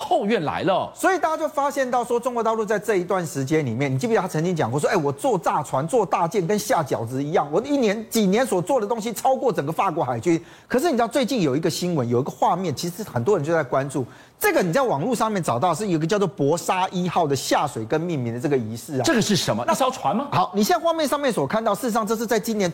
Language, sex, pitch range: Chinese, male, 150-235 Hz